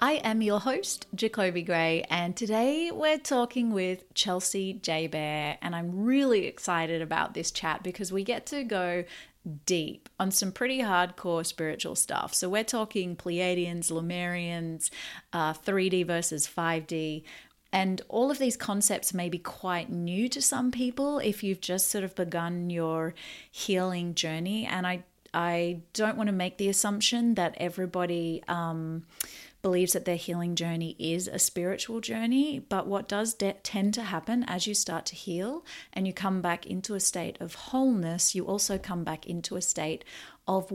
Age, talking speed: 30-49, 165 wpm